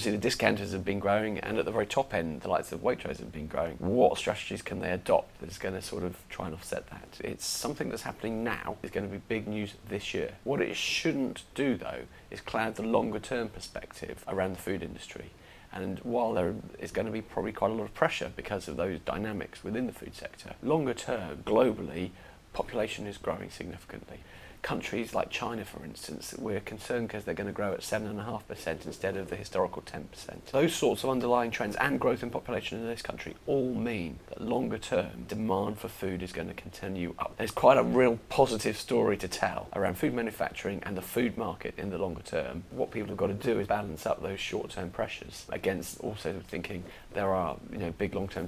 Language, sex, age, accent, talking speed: English, male, 30-49, British, 215 wpm